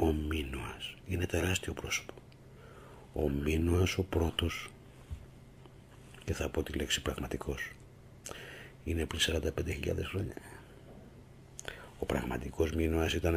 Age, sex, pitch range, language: 60-79, male, 75-95 Hz, Greek